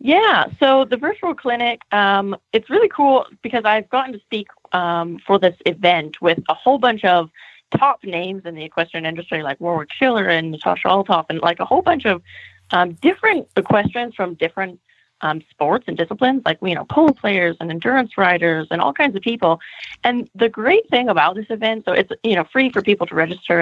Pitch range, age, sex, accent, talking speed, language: 165-230 Hz, 20-39, female, American, 200 wpm, English